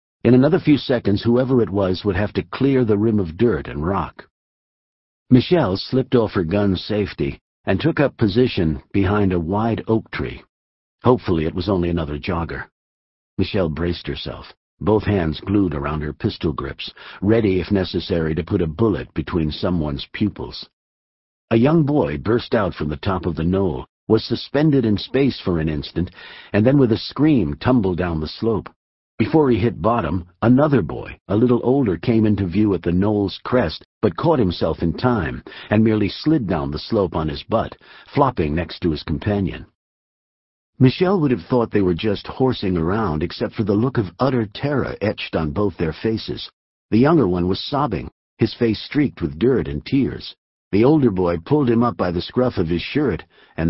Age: 60-79